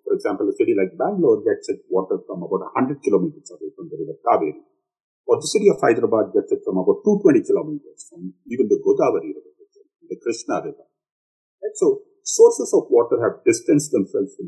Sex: male